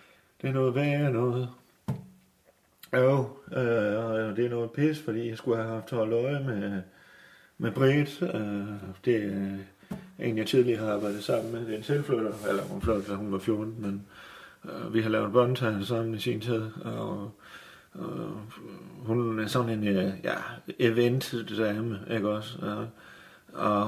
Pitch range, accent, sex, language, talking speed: 110-130 Hz, native, male, Danish, 165 wpm